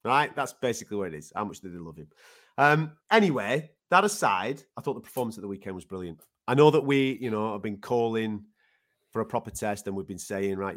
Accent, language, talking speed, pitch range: British, English, 240 wpm, 100-130 Hz